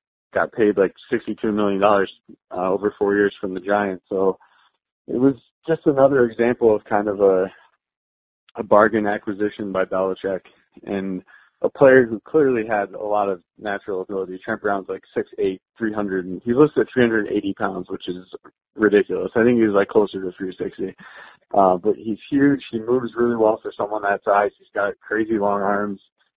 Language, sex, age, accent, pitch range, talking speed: English, male, 20-39, American, 100-115 Hz, 180 wpm